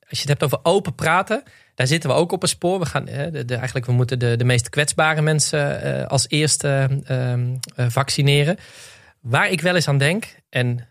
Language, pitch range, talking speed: Dutch, 120-155 Hz, 210 wpm